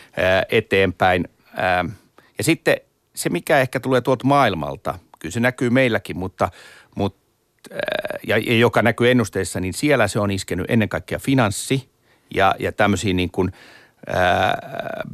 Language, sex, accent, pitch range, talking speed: Finnish, male, native, 95-120 Hz, 130 wpm